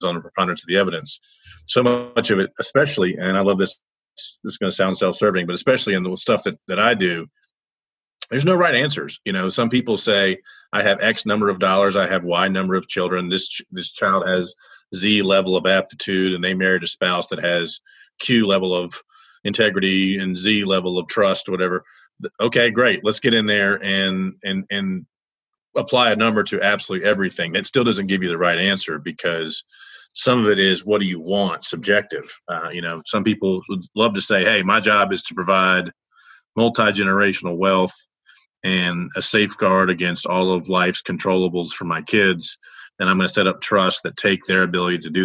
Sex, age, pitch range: male, 40-59, 90-105 Hz